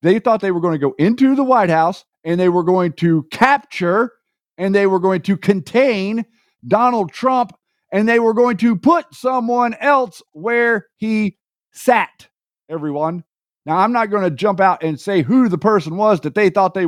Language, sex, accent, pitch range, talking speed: English, male, American, 175-235 Hz, 190 wpm